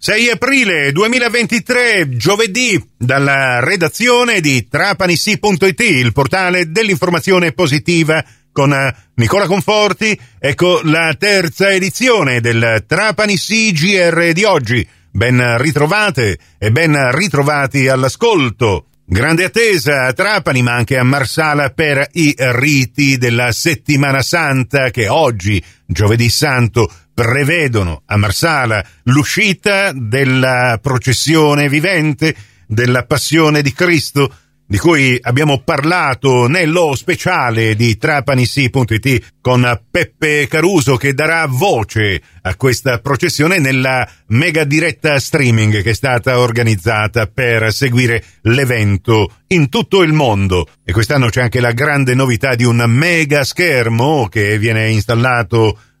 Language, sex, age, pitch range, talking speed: Italian, male, 40-59, 120-165 Hz, 115 wpm